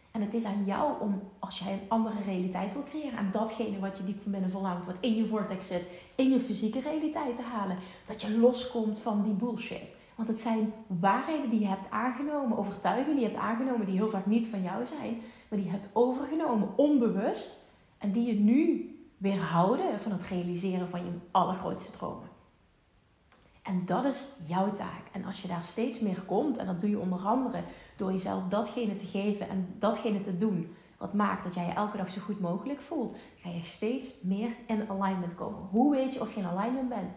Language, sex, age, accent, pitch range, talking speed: Dutch, female, 30-49, Dutch, 185-230 Hz, 210 wpm